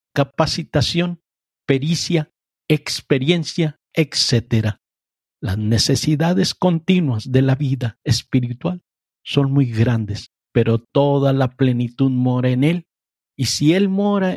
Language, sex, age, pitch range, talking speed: Spanish, male, 50-69, 125-155 Hz, 105 wpm